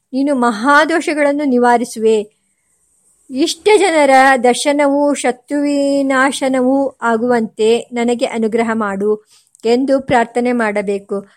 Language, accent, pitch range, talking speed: Kannada, native, 235-280 Hz, 75 wpm